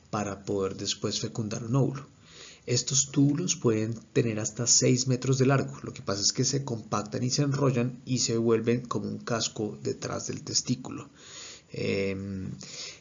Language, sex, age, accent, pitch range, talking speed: English, male, 30-49, Colombian, 105-125 Hz, 160 wpm